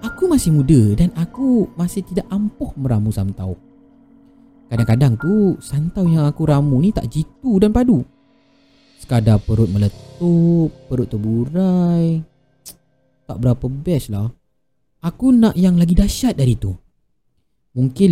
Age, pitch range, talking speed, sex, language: 30-49, 125-210 Hz, 125 wpm, male, Malay